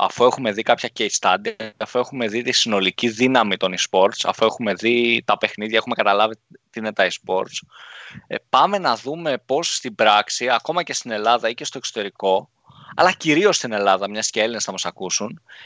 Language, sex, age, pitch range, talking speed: Greek, male, 20-39, 110-135 Hz, 190 wpm